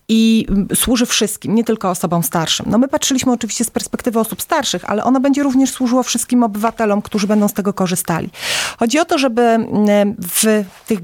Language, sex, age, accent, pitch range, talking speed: Polish, female, 30-49, native, 190-230 Hz, 180 wpm